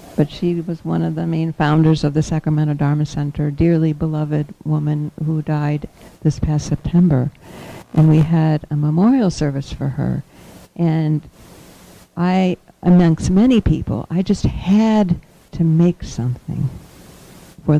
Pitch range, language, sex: 150-175 Hz, English, female